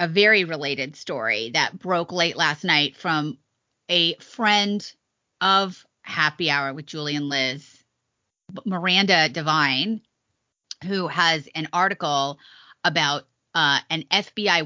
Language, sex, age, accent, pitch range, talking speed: English, female, 30-49, American, 150-185 Hz, 115 wpm